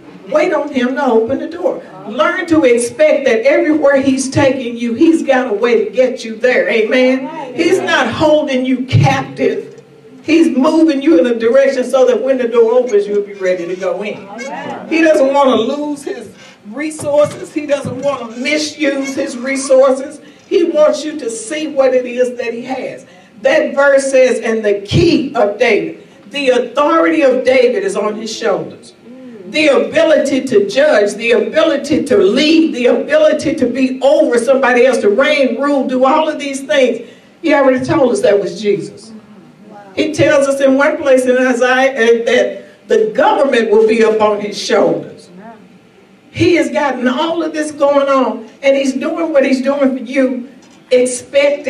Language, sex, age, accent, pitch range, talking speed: English, female, 50-69, American, 245-300 Hz, 175 wpm